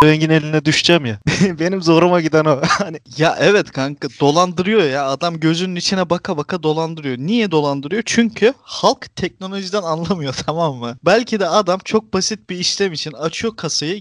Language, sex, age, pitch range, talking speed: Turkish, male, 30-49, 150-200 Hz, 165 wpm